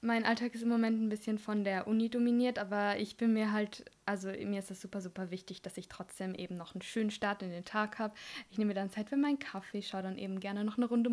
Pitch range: 200-225 Hz